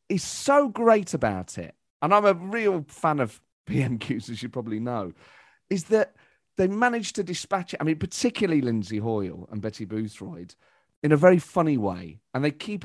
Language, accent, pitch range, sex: English, British, 120-200 Hz, male